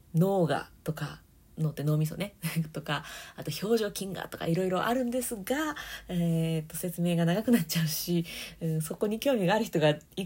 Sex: female